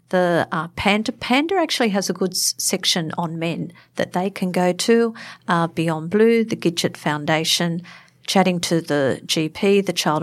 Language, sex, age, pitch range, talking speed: English, female, 50-69, 170-205 Hz, 165 wpm